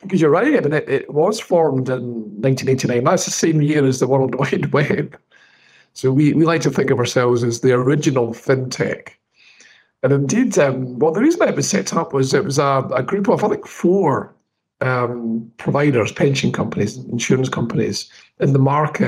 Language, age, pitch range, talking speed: English, 50-69, 125-165 Hz, 190 wpm